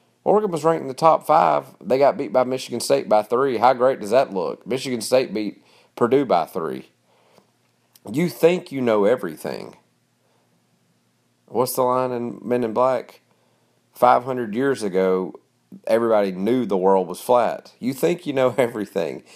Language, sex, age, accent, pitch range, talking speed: English, male, 40-59, American, 95-135 Hz, 160 wpm